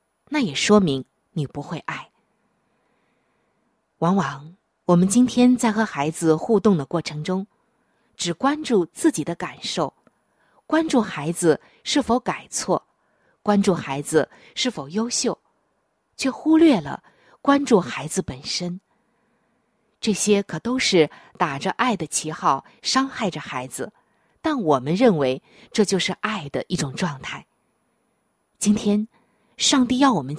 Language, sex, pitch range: Chinese, female, 165-240 Hz